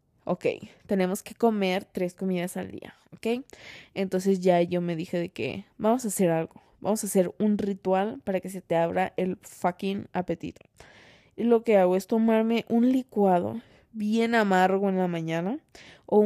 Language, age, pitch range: Spanish, 20-39, 180-220 Hz